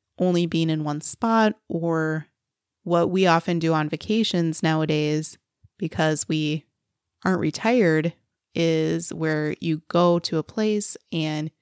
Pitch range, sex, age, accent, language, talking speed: 160-185 Hz, female, 20-39, American, English, 130 wpm